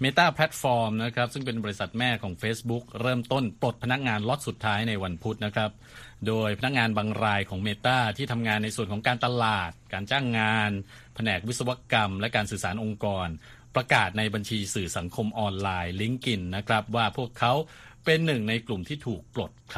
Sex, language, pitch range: male, Thai, 100-120 Hz